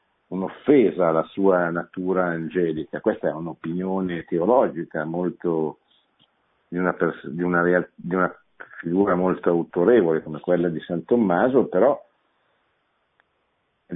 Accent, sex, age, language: native, male, 50-69, Italian